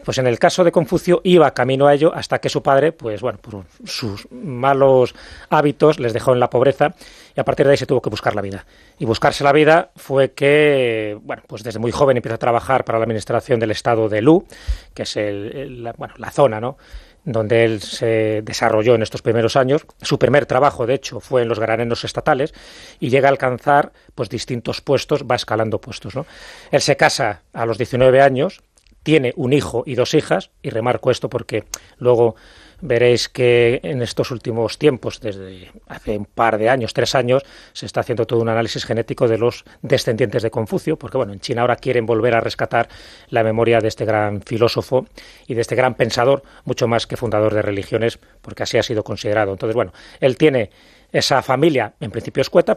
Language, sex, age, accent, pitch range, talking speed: English, male, 30-49, Spanish, 115-135 Hz, 200 wpm